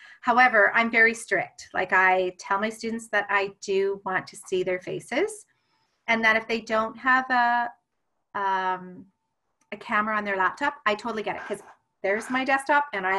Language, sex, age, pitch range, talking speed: English, female, 30-49, 195-240 Hz, 180 wpm